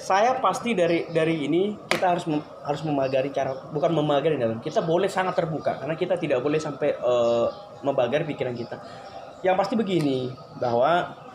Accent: native